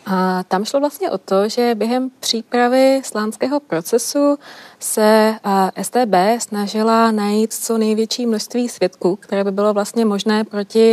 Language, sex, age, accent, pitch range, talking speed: Czech, female, 20-39, native, 195-230 Hz, 135 wpm